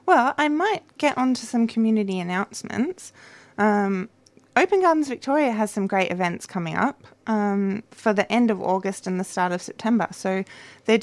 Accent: Australian